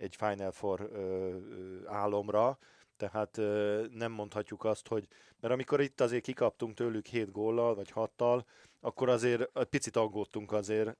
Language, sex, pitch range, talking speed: Hungarian, male, 100-115 Hz, 135 wpm